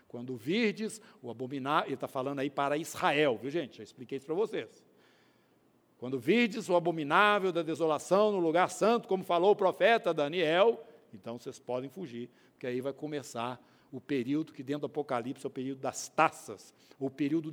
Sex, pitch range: male, 135-195 Hz